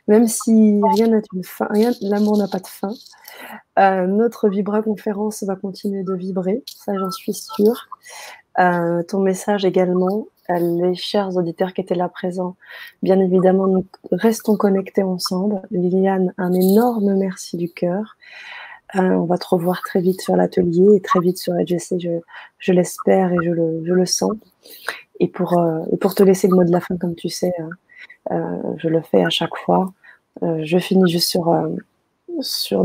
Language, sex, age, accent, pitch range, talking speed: French, female, 20-39, French, 180-205 Hz, 185 wpm